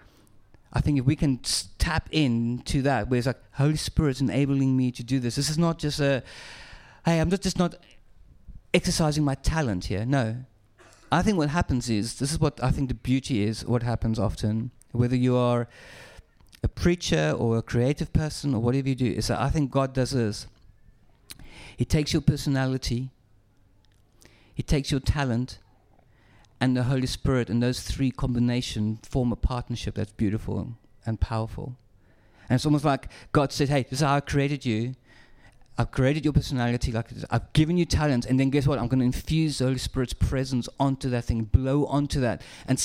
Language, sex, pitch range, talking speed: English, male, 110-140 Hz, 190 wpm